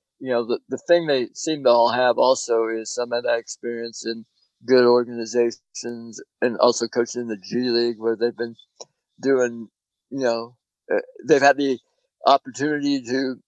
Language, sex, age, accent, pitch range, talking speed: English, male, 60-79, American, 110-130 Hz, 160 wpm